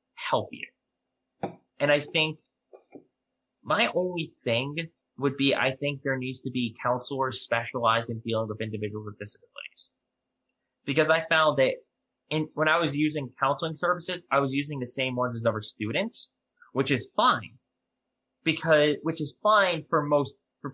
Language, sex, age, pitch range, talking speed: English, male, 20-39, 125-155 Hz, 155 wpm